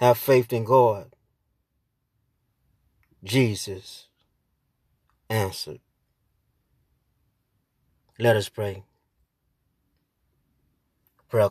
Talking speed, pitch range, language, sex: 50 wpm, 105-130 Hz, English, male